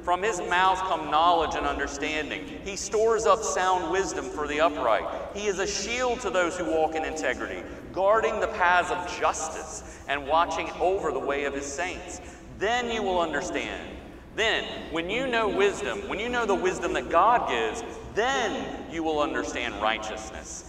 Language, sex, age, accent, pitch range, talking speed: English, male, 40-59, American, 110-180 Hz, 175 wpm